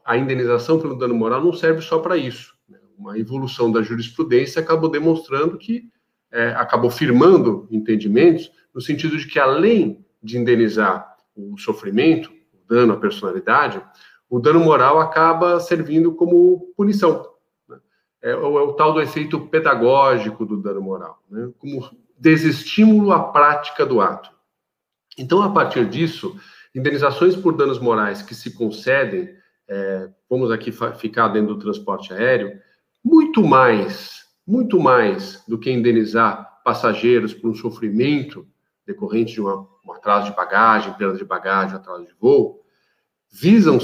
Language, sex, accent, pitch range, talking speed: Portuguese, male, Brazilian, 110-170 Hz, 140 wpm